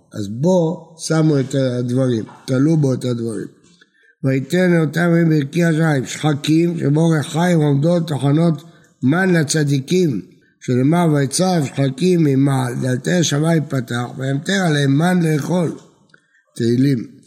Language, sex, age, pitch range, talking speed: Hebrew, male, 60-79, 140-170 Hz, 110 wpm